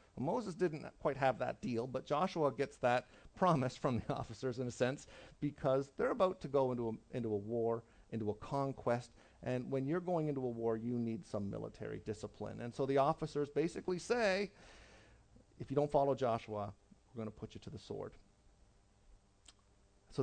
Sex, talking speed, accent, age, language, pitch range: male, 180 wpm, American, 40-59, English, 105-130 Hz